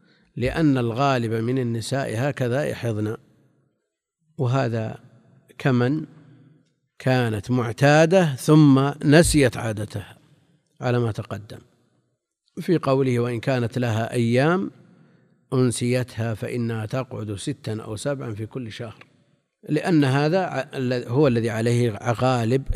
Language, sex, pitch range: Arabic, male, 115-145 Hz